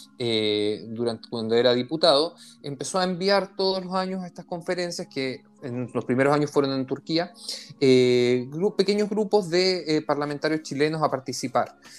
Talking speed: 160 wpm